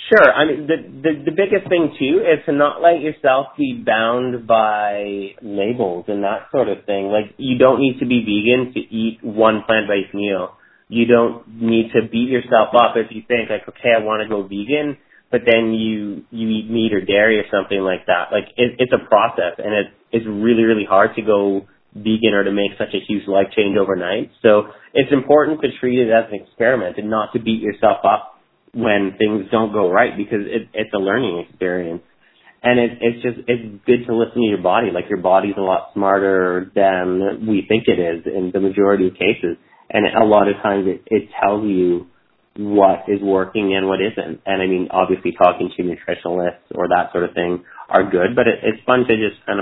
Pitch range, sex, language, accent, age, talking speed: 95-115 Hz, male, English, American, 30-49, 210 wpm